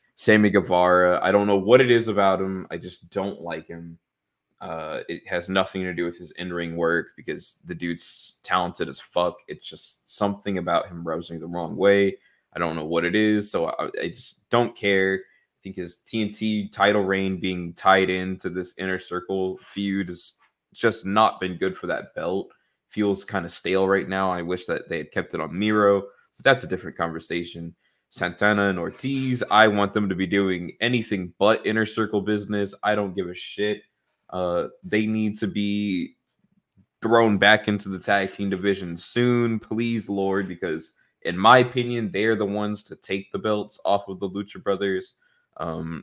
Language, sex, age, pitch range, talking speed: English, male, 20-39, 90-105 Hz, 190 wpm